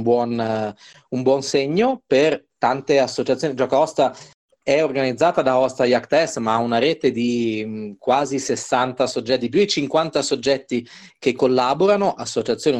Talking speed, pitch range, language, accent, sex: 125 wpm, 130-190 Hz, Italian, native, male